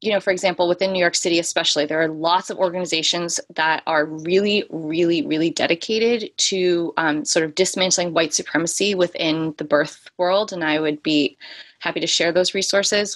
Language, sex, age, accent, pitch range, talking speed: English, female, 20-39, American, 170-200 Hz, 180 wpm